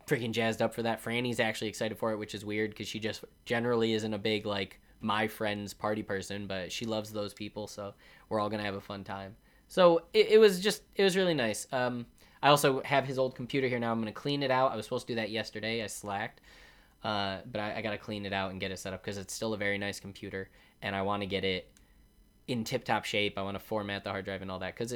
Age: 20-39